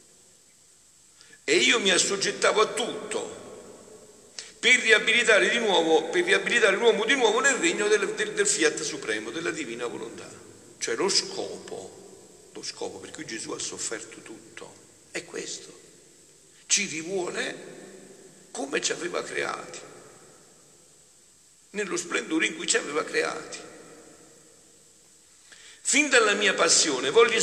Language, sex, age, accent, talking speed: Italian, male, 60-79, native, 125 wpm